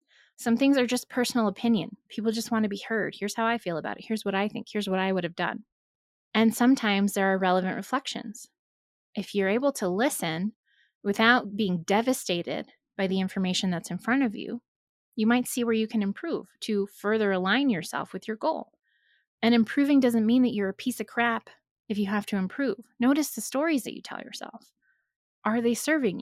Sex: female